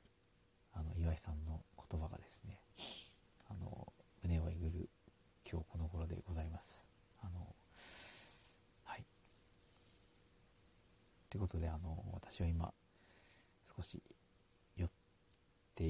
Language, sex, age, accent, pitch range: Japanese, male, 40-59, native, 85-95 Hz